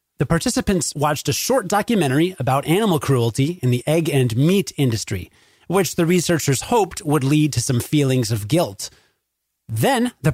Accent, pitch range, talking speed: American, 130-175 Hz, 165 wpm